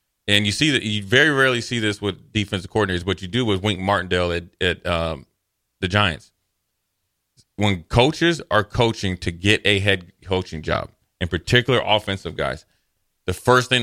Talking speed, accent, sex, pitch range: 175 wpm, American, male, 95-115 Hz